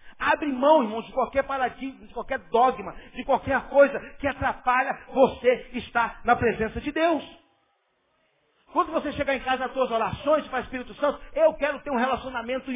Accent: Brazilian